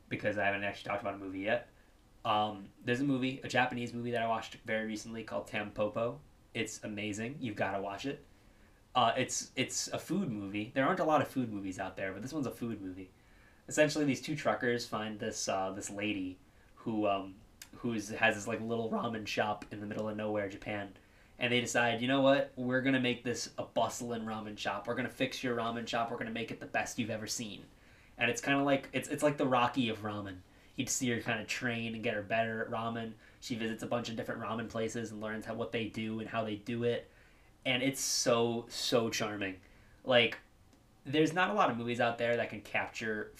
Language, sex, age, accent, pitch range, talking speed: English, male, 20-39, American, 105-120 Hz, 230 wpm